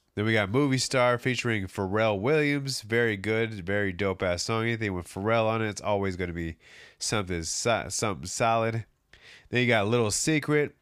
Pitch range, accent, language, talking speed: 100-135 Hz, American, English, 170 wpm